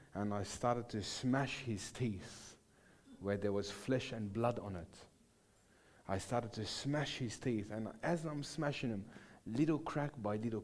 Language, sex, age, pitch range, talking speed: English, male, 30-49, 100-125 Hz, 170 wpm